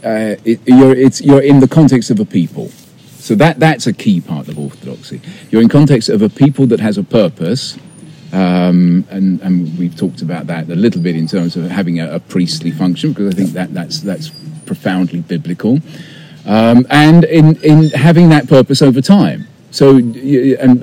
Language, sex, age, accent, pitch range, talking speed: English, male, 40-59, British, 90-140 Hz, 190 wpm